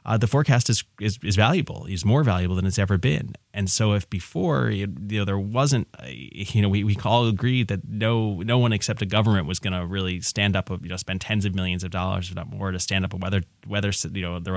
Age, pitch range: 20-39, 90-110 Hz